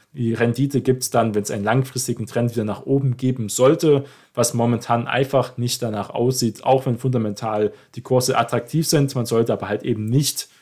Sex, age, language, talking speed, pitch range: male, 20-39, German, 190 wpm, 115-130 Hz